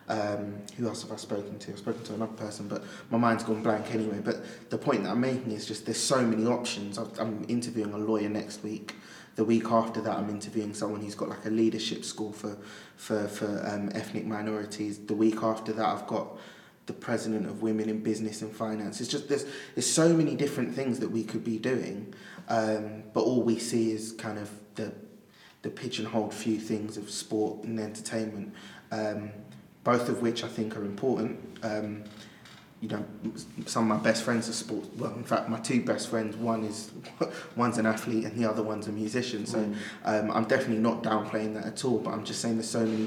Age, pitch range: 20-39, 105-115 Hz